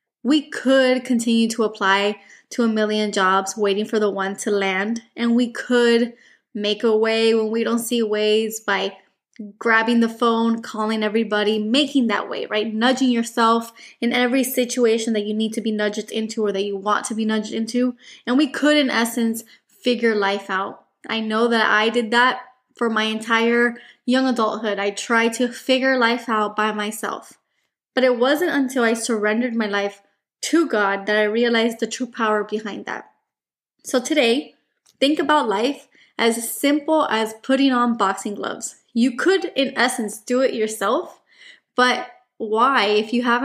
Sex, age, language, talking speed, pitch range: female, 20-39, English, 175 wpm, 215-250 Hz